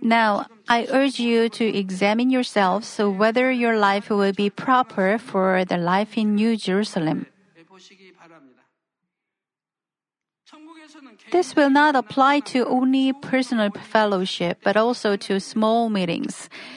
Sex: female